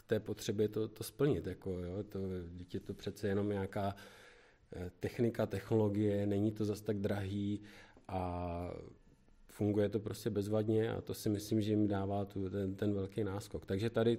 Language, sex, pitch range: Czech, male, 95-110 Hz